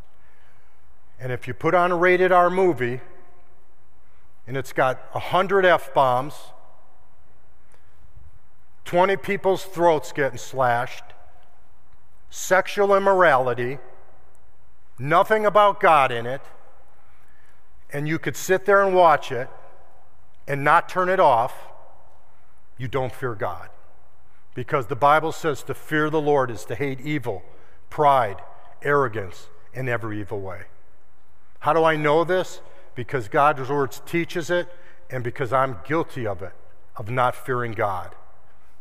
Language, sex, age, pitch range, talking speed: English, male, 50-69, 95-145 Hz, 125 wpm